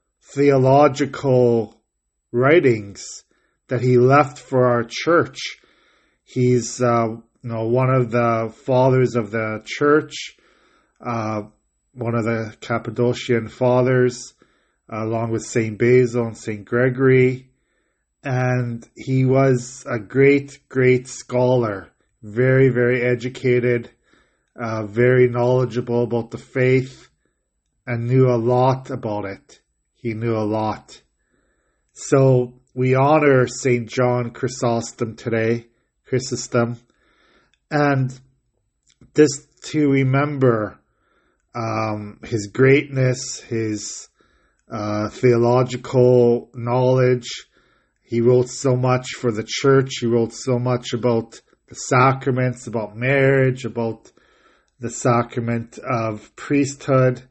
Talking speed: 105 wpm